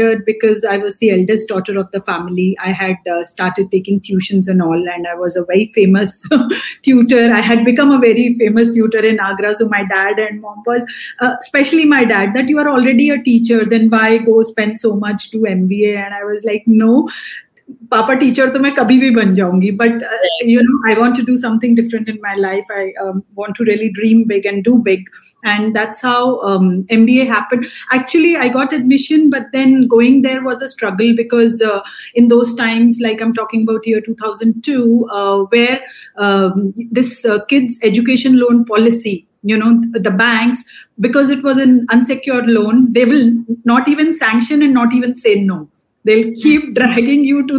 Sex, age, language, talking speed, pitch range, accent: female, 30-49, English, 190 wpm, 205-250 Hz, Indian